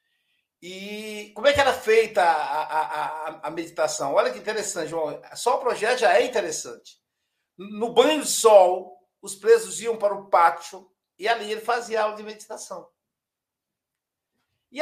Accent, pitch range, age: Brazilian, 180-240 Hz, 60-79